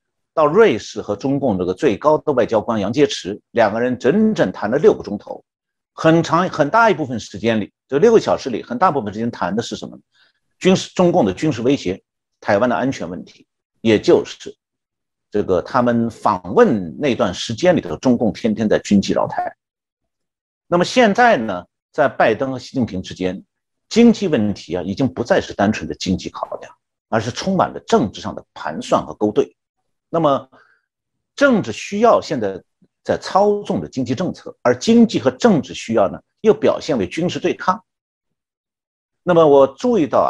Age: 50-69